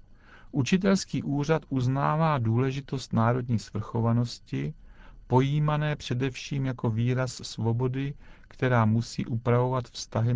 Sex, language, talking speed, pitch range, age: male, Czech, 85 wpm, 110-135 Hz, 50-69